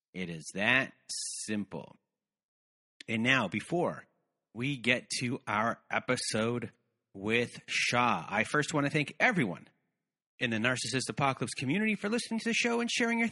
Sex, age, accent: male, 30-49, American